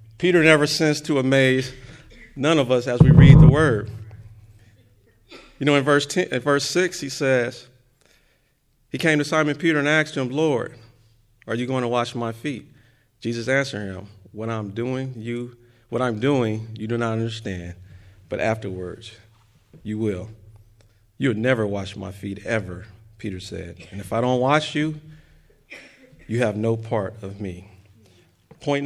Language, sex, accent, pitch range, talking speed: English, male, American, 105-140 Hz, 160 wpm